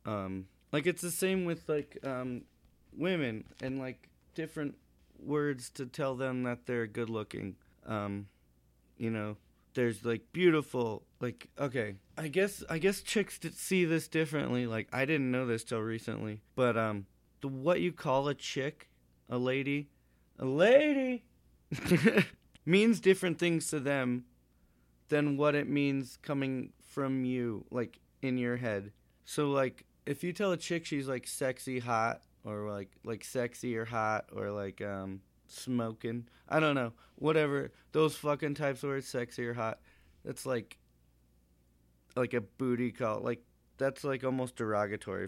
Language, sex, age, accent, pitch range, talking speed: English, male, 30-49, American, 105-145 Hz, 150 wpm